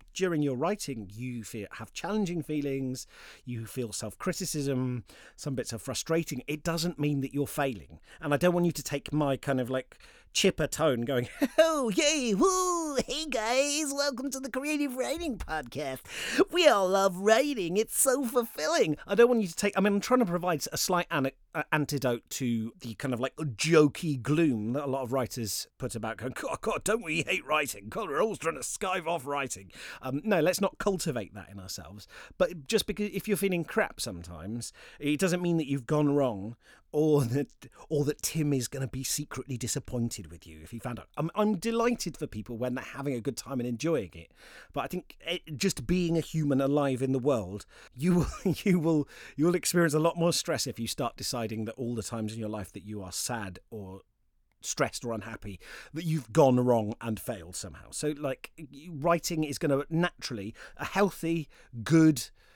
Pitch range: 120-175 Hz